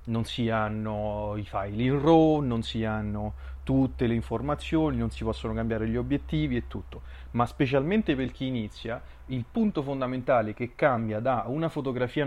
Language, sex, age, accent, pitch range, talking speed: Italian, male, 30-49, native, 110-140 Hz, 165 wpm